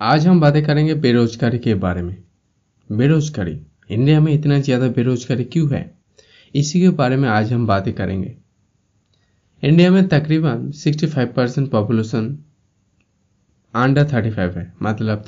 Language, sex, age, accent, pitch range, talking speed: Hindi, male, 20-39, native, 105-135 Hz, 140 wpm